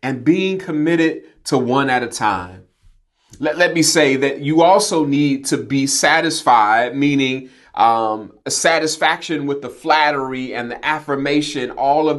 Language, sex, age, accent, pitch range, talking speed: English, male, 30-49, American, 130-160 Hz, 155 wpm